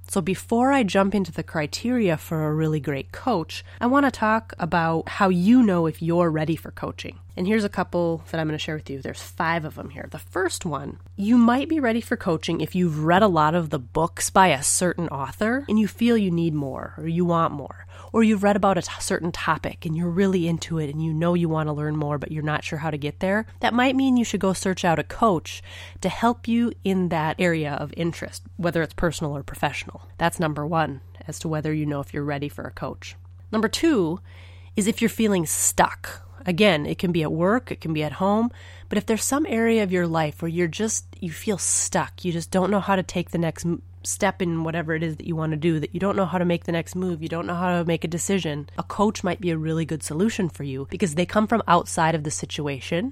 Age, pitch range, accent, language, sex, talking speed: 20-39, 150-195 Hz, American, English, female, 255 wpm